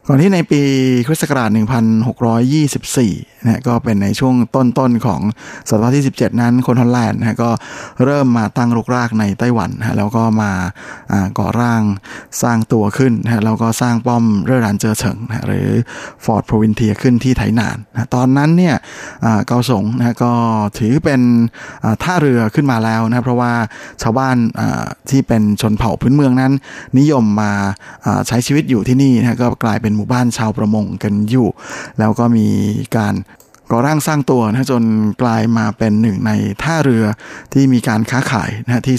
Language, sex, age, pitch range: Thai, male, 20-39, 110-130 Hz